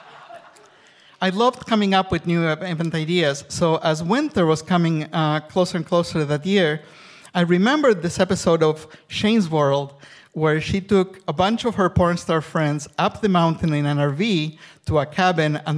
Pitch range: 150-185 Hz